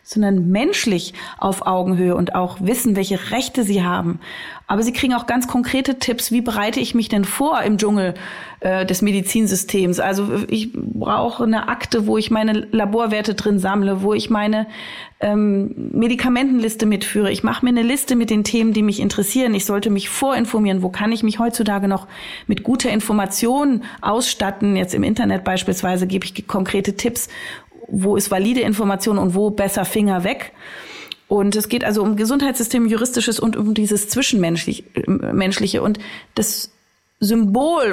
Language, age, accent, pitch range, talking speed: German, 30-49, German, 195-235 Hz, 160 wpm